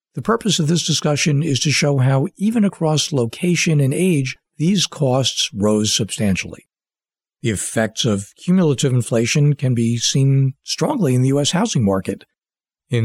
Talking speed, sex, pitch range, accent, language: 150 wpm, male, 120-150 Hz, American, English